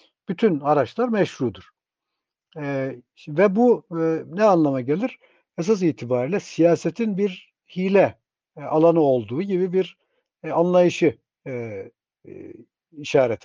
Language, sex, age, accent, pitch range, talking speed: Turkish, male, 60-79, native, 145-195 Hz, 110 wpm